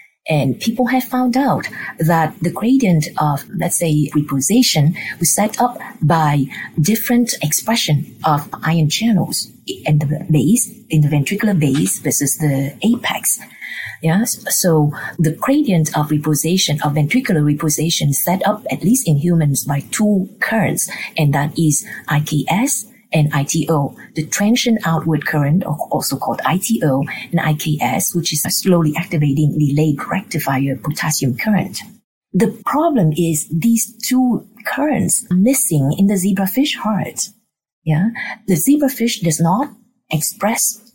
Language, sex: English, female